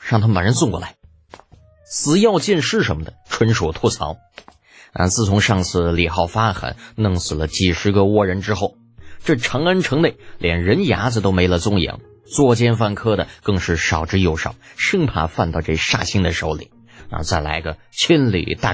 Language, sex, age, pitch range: Chinese, male, 30-49, 90-120 Hz